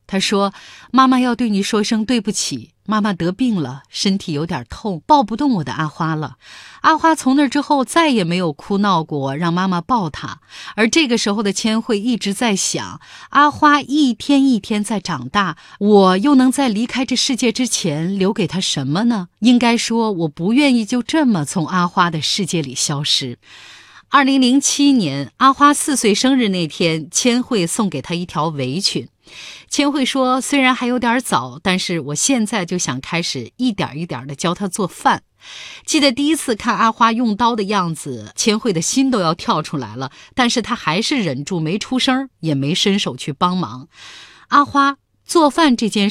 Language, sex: Chinese, female